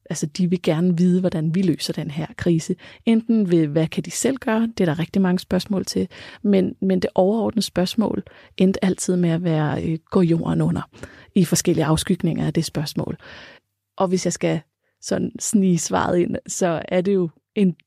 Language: Danish